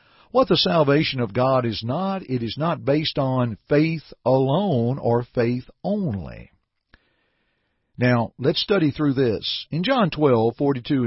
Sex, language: male, English